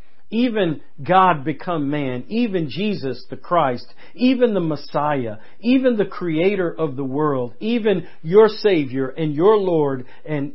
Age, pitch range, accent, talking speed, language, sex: 50-69, 145-190 Hz, American, 135 wpm, English, male